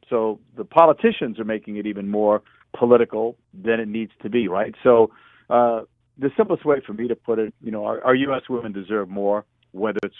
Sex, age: male, 50-69